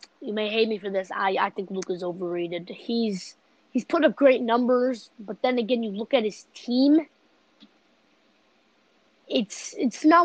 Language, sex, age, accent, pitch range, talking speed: English, female, 20-39, American, 210-270 Hz, 170 wpm